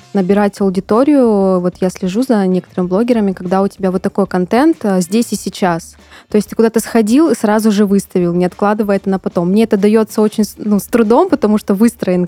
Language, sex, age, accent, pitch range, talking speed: Russian, female, 20-39, native, 185-220 Hz, 200 wpm